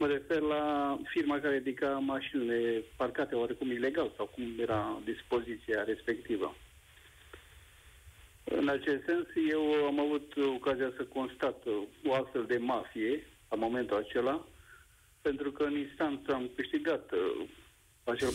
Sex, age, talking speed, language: male, 50-69, 125 wpm, Romanian